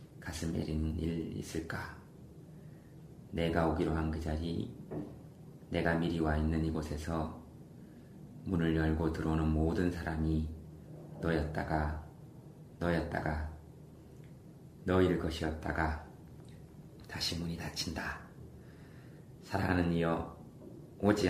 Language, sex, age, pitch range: Korean, male, 30-49, 80-85 Hz